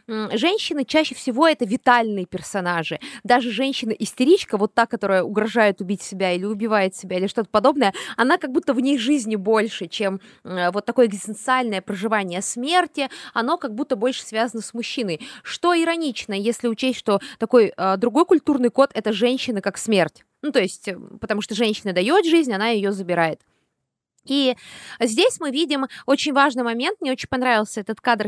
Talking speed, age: 160 wpm, 20-39